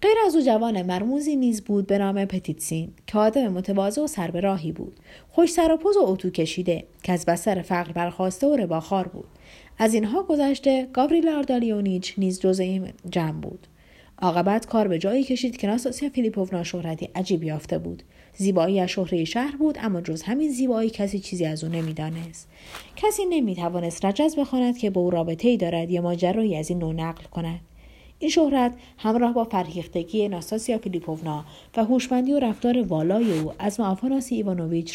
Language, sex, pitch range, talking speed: Persian, female, 170-235 Hz, 175 wpm